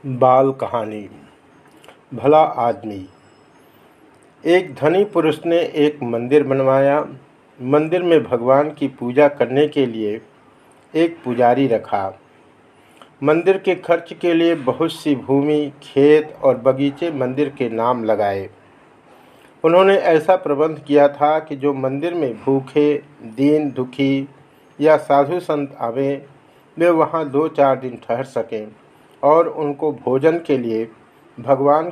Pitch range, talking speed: 130-160 Hz, 125 wpm